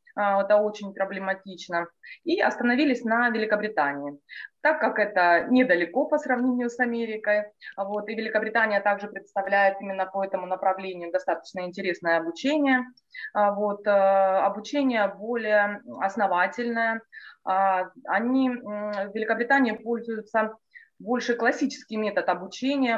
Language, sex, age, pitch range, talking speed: Russian, female, 20-39, 195-245 Hz, 95 wpm